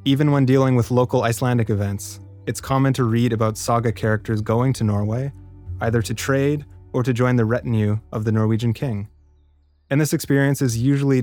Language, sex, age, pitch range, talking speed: English, male, 20-39, 105-125 Hz, 180 wpm